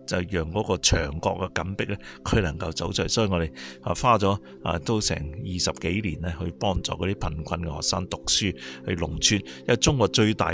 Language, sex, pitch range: Chinese, male, 80-100 Hz